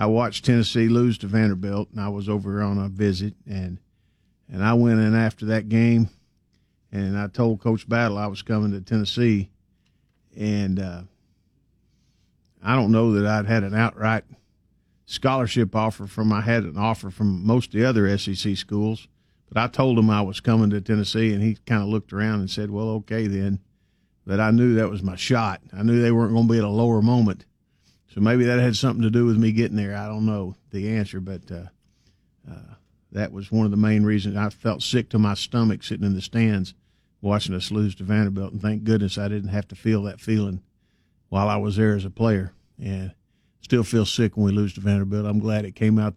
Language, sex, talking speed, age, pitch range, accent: English, male, 215 wpm, 50-69, 100-115 Hz, American